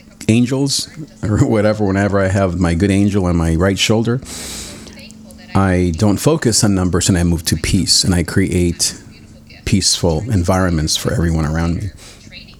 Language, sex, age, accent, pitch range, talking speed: English, male, 40-59, American, 90-110 Hz, 150 wpm